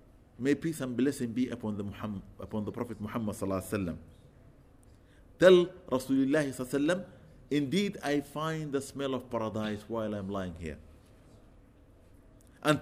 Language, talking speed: English, 125 wpm